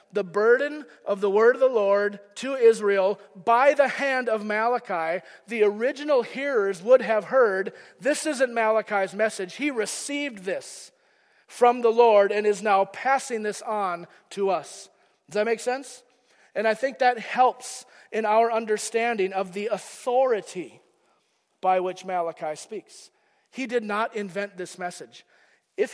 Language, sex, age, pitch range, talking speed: English, male, 40-59, 190-245 Hz, 150 wpm